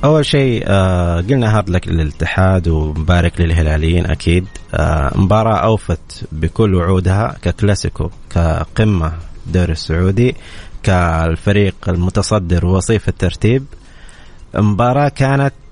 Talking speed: 90 wpm